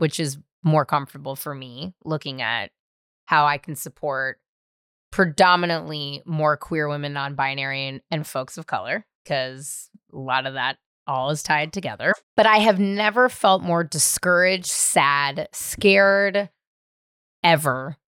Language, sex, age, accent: English, female, 20-39, American